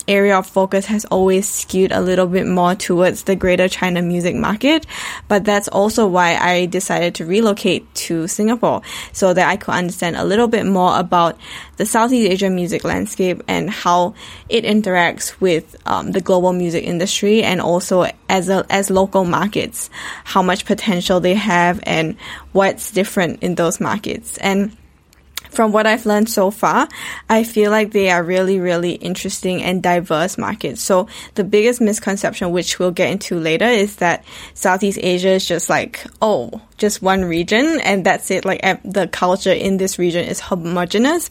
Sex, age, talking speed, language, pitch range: female, 10-29, 170 wpm, English, 180-205 Hz